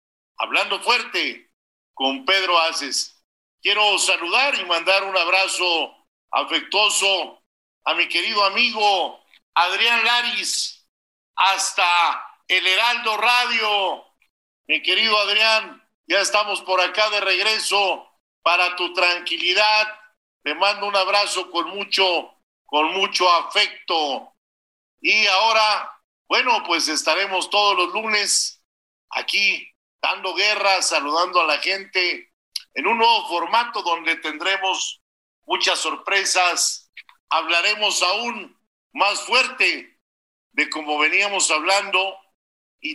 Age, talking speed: 50-69, 105 wpm